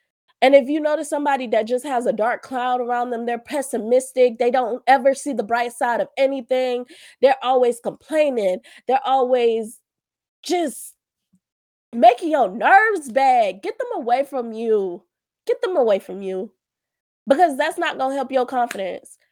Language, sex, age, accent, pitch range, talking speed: English, female, 20-39, American, 230-305 Hz, 160 wpm